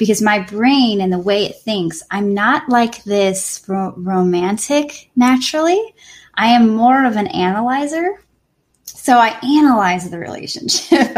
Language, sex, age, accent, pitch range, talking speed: English, female, 10-29, American, 190-270 Hz, 135 wpm